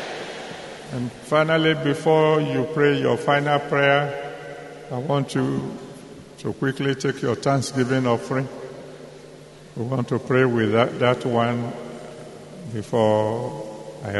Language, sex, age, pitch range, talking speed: English, male, 50-69, 120-145 Hz, 115 wpm